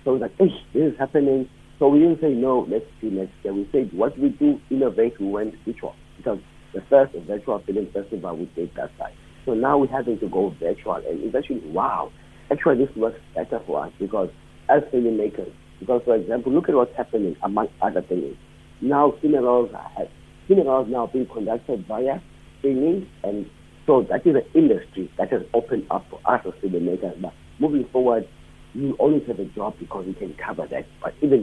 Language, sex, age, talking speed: English, male, 50-69, 195 wpm